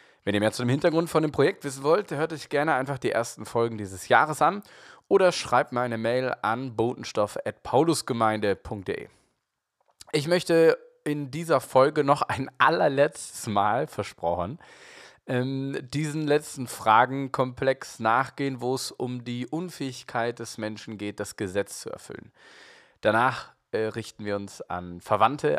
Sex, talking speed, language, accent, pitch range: male, 140 wpm, German, German, 115-150 Hz